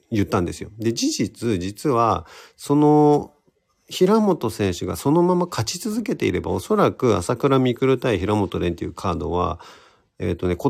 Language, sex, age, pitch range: Japanese, male, 40-59, 90-135 Hz